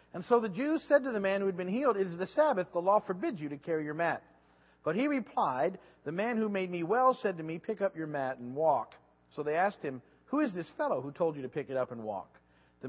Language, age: English, 50-69